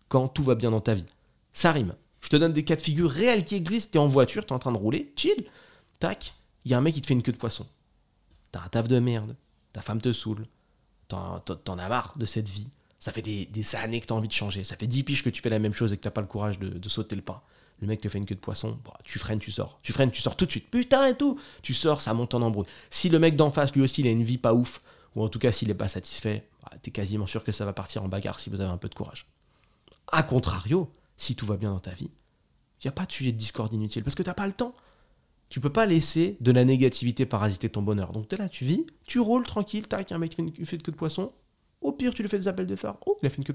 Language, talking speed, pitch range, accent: French, 315 wpm, 110-165 Hz, French